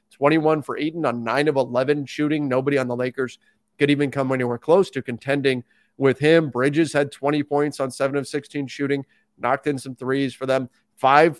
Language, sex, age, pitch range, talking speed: English, male, 30-49, 135-175 Hz, 195 wpm